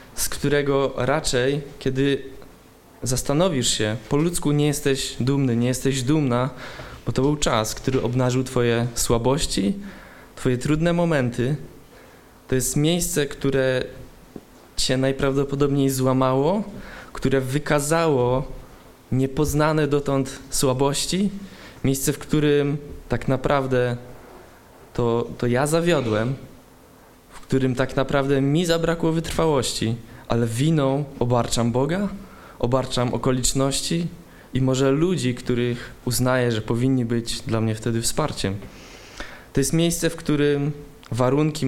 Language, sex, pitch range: Polish, male, 120-145 Hz